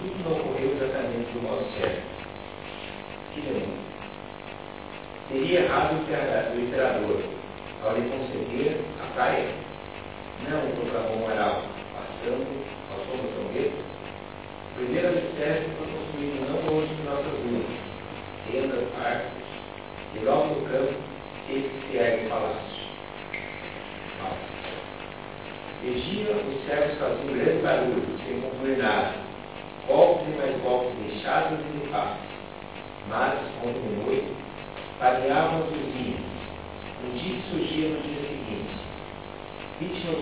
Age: 50-69